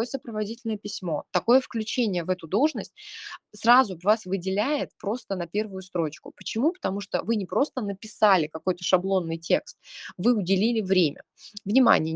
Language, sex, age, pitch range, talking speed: Russian, female, 20-39, 170-215 Hz, 140 wpm